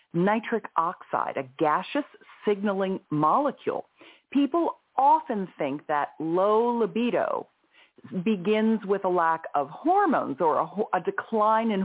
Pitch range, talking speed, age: 165-235 Hz, 115 wpm, 40-59